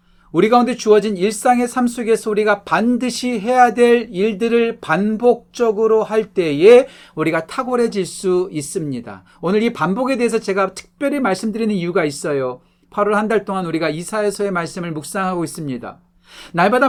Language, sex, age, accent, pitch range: Korean, male, 40-59, native, 155-230 Hz